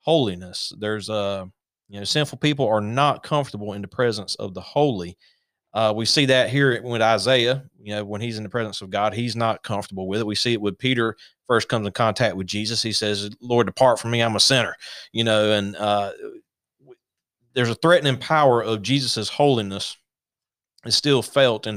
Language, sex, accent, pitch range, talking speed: English, male, American, 100-125 Hz, 200 wpm